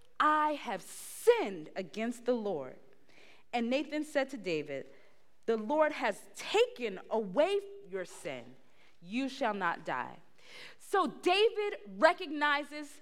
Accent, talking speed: American, 115 wpm